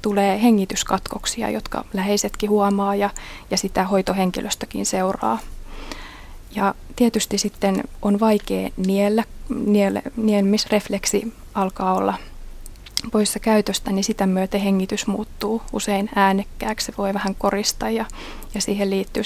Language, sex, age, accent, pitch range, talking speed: Finnish, female, 20-39, native, 195-215 Hz, 115 wpm